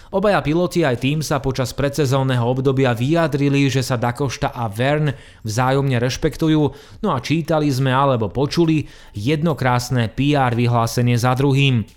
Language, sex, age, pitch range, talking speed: Slovak, male, 20-39, 125-150 Hz, 135 wpm